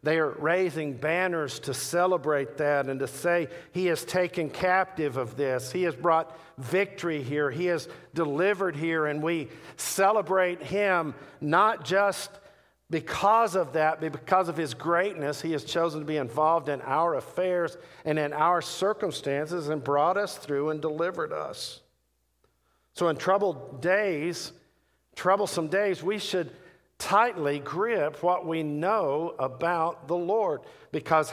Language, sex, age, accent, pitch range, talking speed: English, male, 50-69, American, 140-175 Hz, 145 wpm